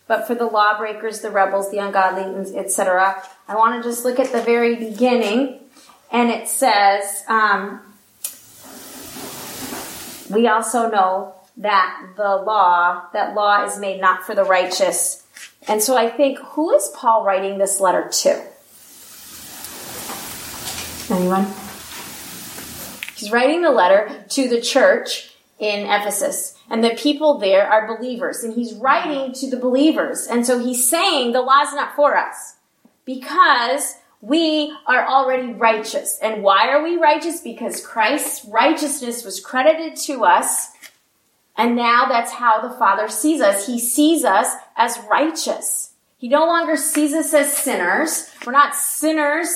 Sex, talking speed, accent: female, 145 wpm, American